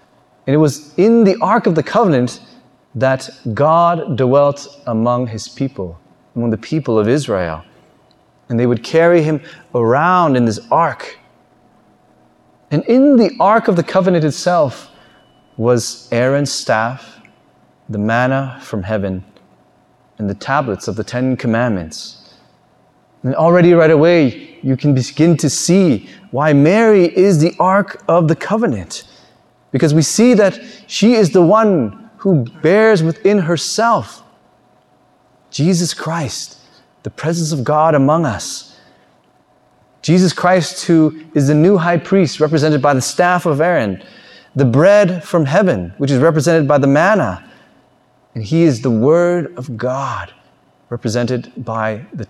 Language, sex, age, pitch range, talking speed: English, male, 30-49, 125-175 Hz, 140 wpm